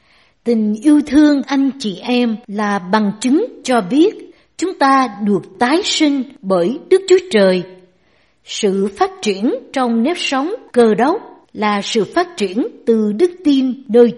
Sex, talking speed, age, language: female, 150 wpm, 60-79, Vietnamese